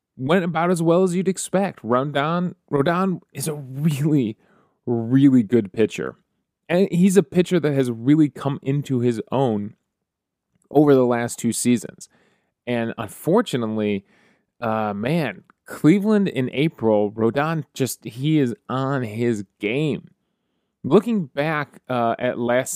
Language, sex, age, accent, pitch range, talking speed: English, male, 30-49, American, 120-170 Hz, 130 wpm